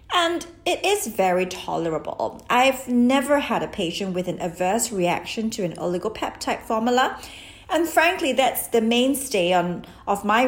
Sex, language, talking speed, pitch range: female, English, 150 wpm, 185-250 Hz